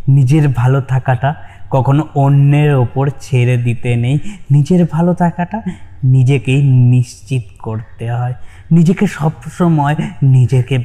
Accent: native